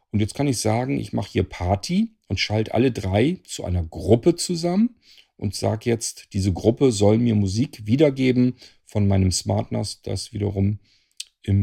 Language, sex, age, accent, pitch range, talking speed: German, male, 40-59, German, 95-115 Hz, 165 wpm